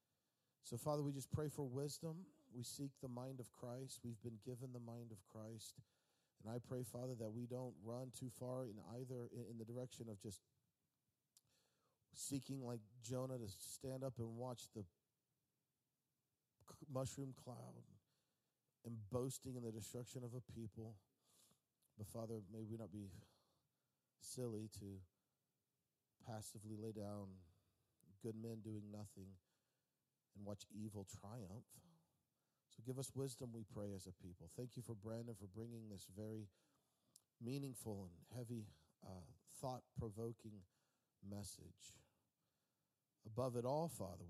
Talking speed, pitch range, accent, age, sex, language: 140 wpm, 105-130 Hz, American, 40-59, male, English